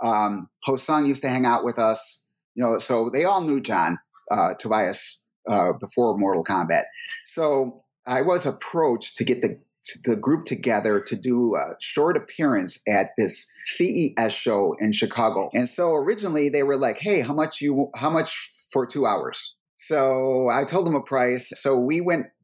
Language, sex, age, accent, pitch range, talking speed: English, male, 30-49, American, 115-150 Hz, 175 wpm